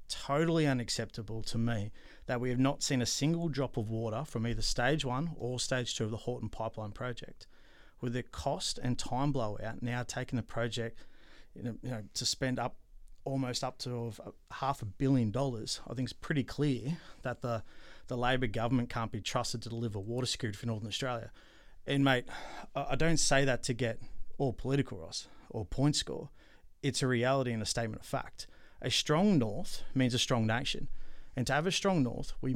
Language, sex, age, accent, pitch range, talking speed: English, male, 30-49, Australian, 115-135 Hz, 190 wpm